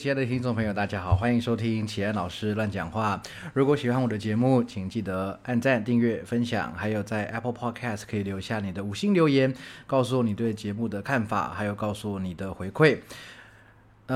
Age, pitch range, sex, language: 20-39, 105-125 Hz, male, Chinese